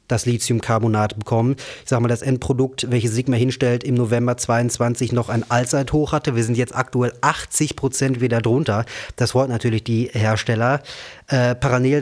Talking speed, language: 165 wpm, German